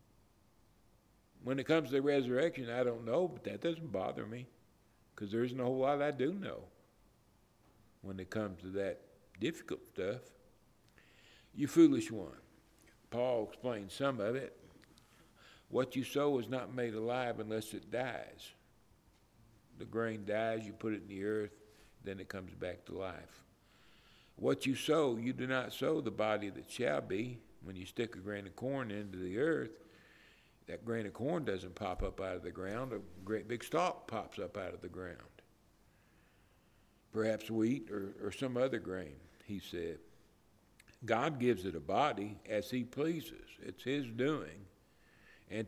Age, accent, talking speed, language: 60-79, American, 165 wpm, English